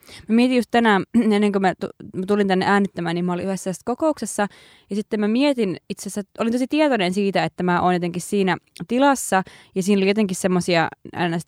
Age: 20-39